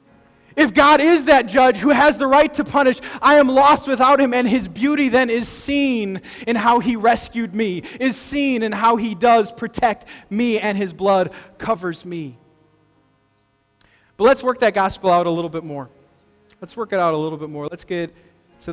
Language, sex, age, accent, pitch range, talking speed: English, male, 20-39, American, 180-265 Hz, 195 wpm